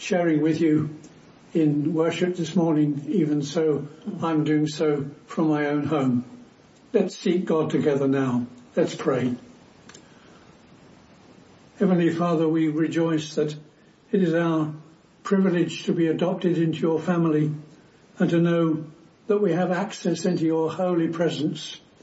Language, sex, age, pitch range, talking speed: English, male, 60-79, 155-185 Hz, 135 wpm